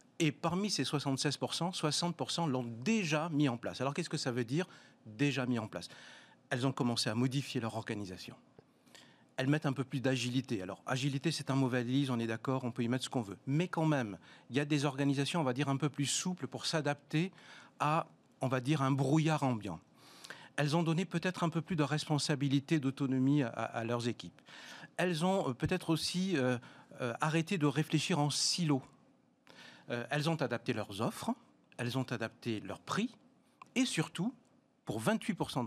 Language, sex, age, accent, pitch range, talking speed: French, male, 40-59, French, 130-170 Hz, 190 wpm